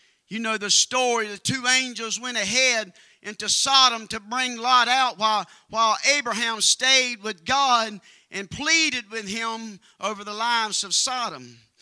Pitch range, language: 220-280 Hz, English